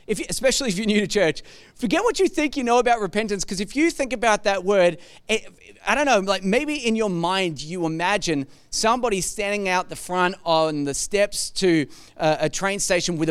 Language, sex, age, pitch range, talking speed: English, male, 30-49, 185-240 Hz, 215 wpm